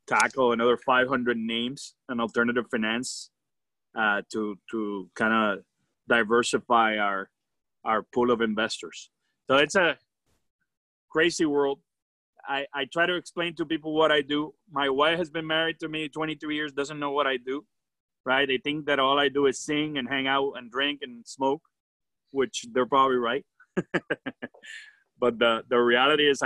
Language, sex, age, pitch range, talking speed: English, male, 30-49, 120-145 Hz, 165 wpm